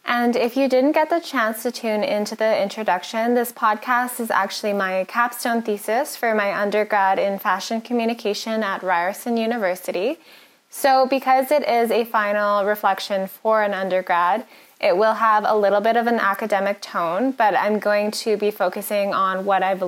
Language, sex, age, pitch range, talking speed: English, female, 10-29, 200-255 Hz, 170 wpm